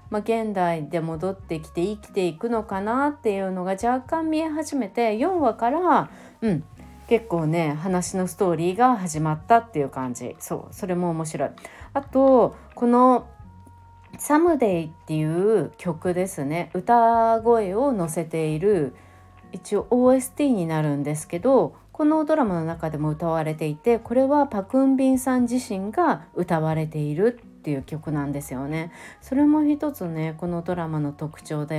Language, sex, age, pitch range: Japanese, female, 30-49, 155-225 Hz